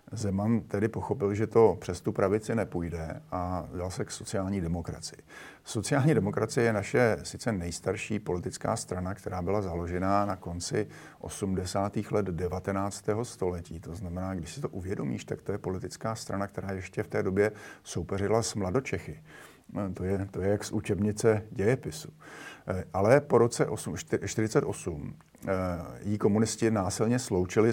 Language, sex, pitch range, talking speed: Slovak, male, 90-110 Hz, 145 wpm